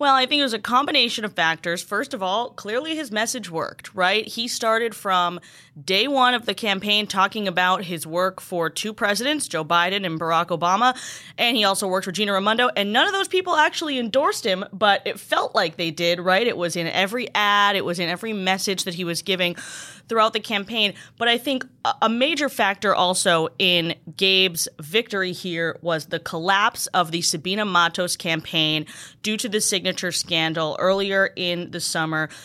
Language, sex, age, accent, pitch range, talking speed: English, female, 20-39, American, 175-230 Hz, 190 wpm